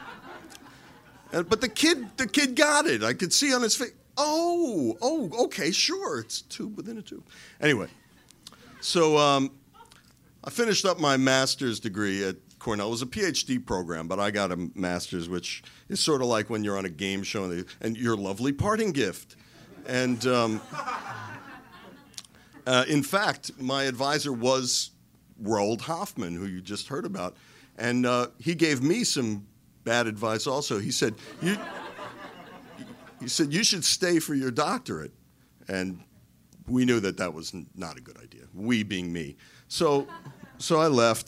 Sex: male